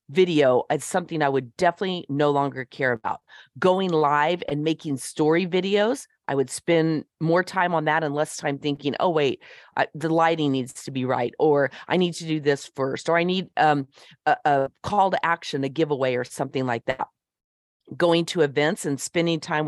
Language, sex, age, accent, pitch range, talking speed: English, female, 40-59, American, 140-185 Hz, 195 wpm